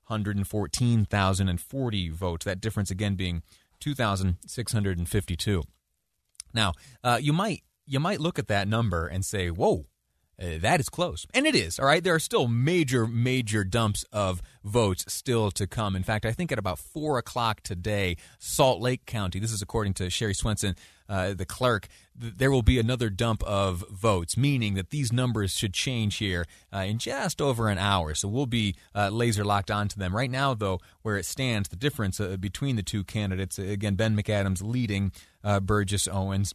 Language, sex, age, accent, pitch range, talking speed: English, male, 30-49, American, 95-120 Hz, 200 wpm